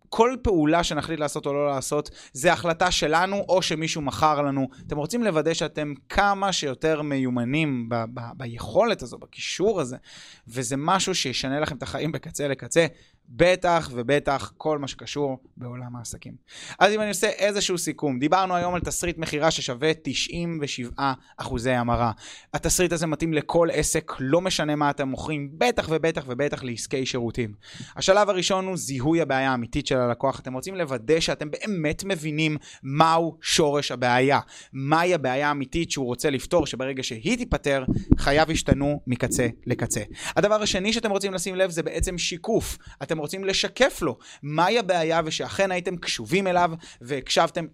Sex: male